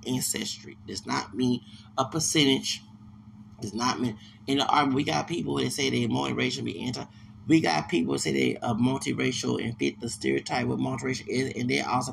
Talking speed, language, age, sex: 190 wpm, English, 30-49, male